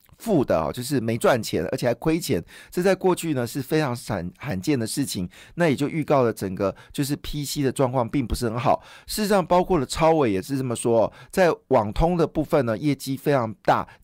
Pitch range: 115-155 Hz